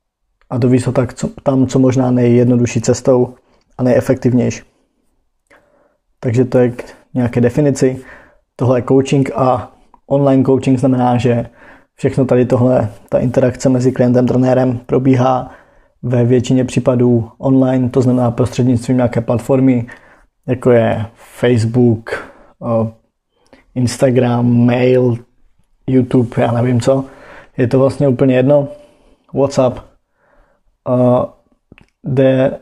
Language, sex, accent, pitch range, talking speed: Czech, male, native, 125-135 Hz, 105 wpm